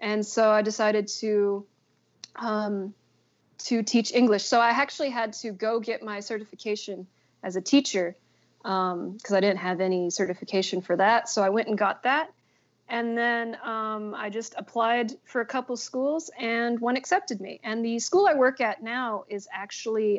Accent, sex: American, female